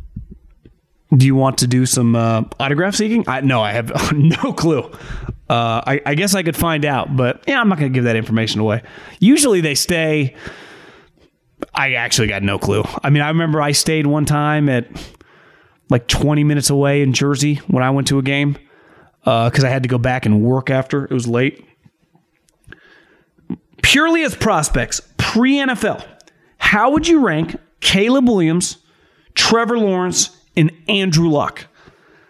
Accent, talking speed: American, 165 wpm